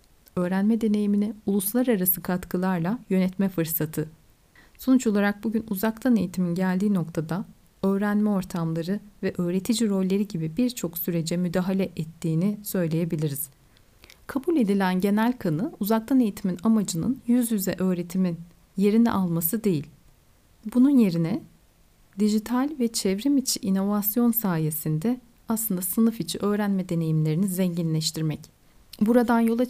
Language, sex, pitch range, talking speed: Turkish, female, 175-225 Hz, 105 wpm